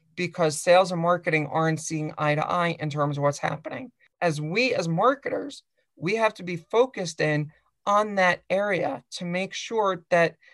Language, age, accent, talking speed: English, 40-59, American, 175 wpm